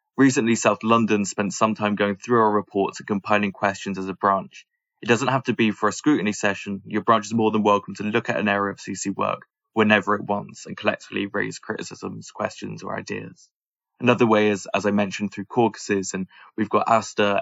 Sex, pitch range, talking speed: male, 100-110 Hz, 210 wpm